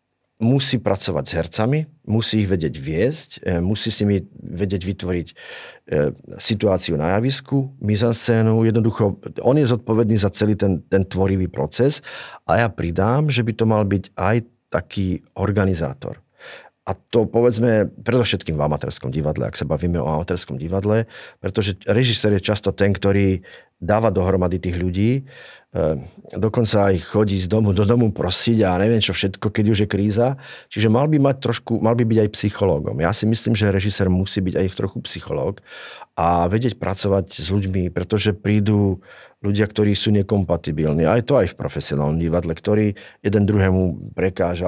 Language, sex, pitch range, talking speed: Slovak, male, 90-110 Hz, 160 wpm